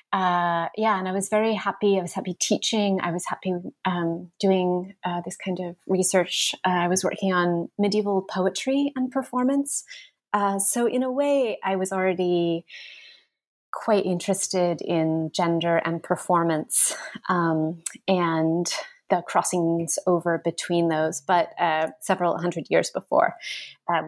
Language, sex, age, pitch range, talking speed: English, female, 30-49, 175-200 Hz, 145 wpm